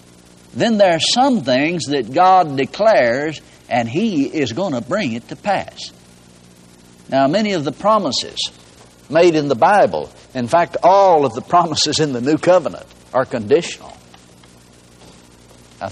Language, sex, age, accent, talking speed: English, male, 60-79, American, 145 wpm